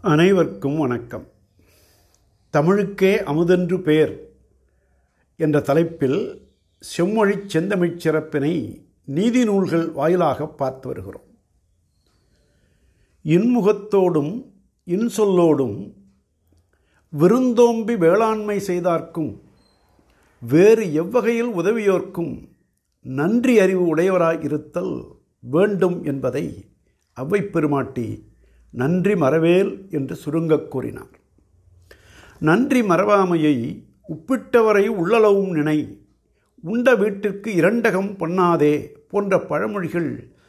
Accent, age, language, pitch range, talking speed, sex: native, 60-79, Tamil, 145-205 Hz, 65 wpm, male